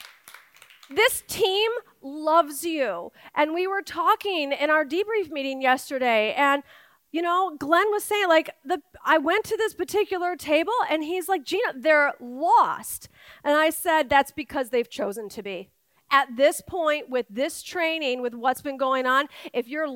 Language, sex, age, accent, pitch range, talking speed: English, female, 40-59, American, 250-325 Hz, 165 wpm